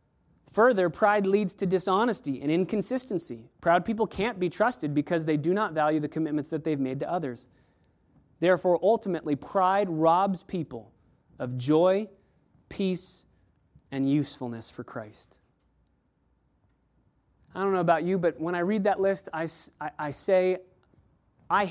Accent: American